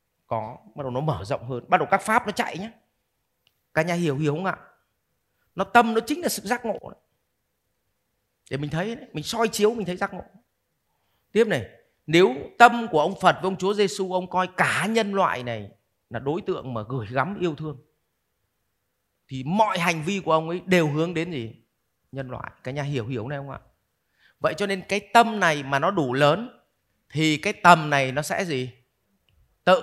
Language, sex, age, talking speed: Vietnamese, male, 30-49, 205 wpm